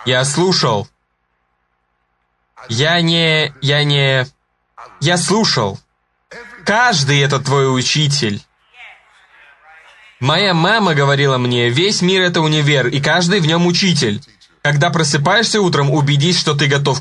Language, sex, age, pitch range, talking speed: Russian, male, 20-39, 140-175 Hz, 115 wpm